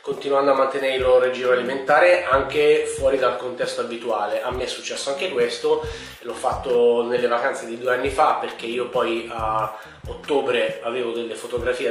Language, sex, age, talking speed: Italian, male, 30-49, 170 wpm